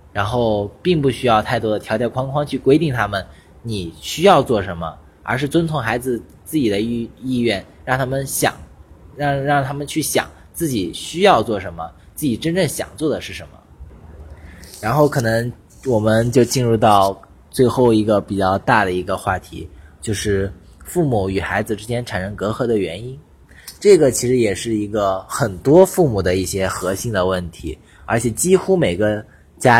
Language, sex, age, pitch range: Chinese, male, 20-39, 95-125 Hz